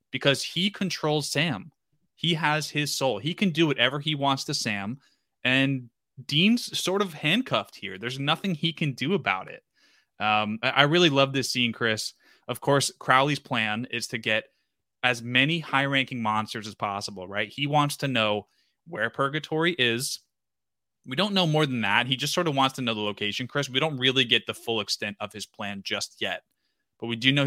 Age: 20-39